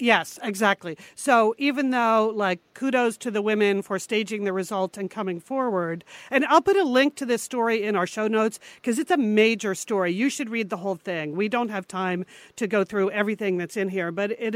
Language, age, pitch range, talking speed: English, 50-69, 185-230 Hz, 220 wpm